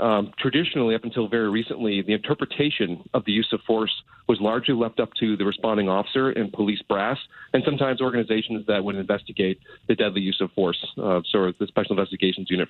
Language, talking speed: English, 190 wpm